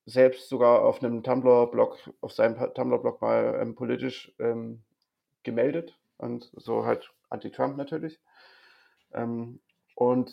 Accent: German